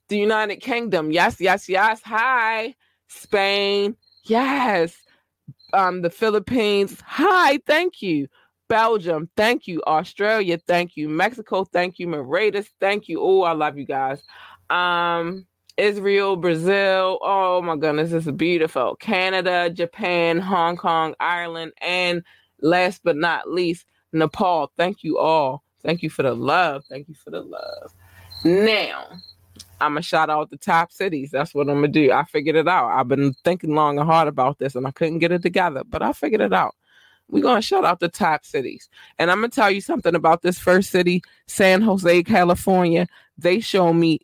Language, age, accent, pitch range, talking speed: English, 20-39, American, 155-195 Hz, 175 wpm